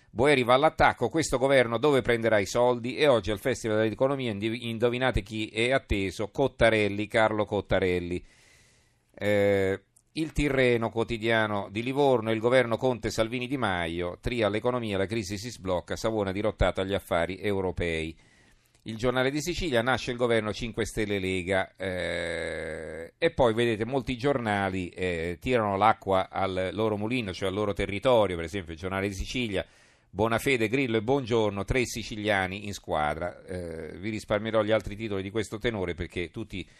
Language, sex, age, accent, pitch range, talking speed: Italian, male, 50-69, native, 95-120 Hz, 155 wpm